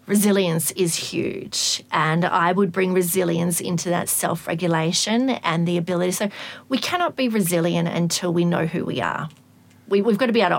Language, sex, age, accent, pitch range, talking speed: English, female, 30-49, Australian, 170-205 Hz, 175 wpm